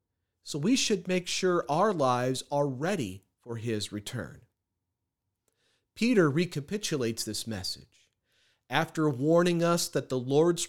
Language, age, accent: English, 40-59, American